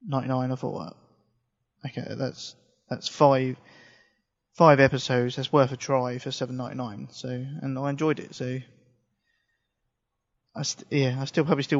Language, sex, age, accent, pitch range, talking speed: English, male, 20-39, British, 130-145 Hz, 165 wpm